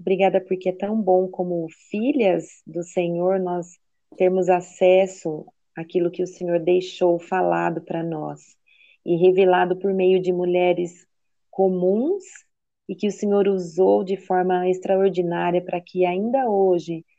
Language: Portuguese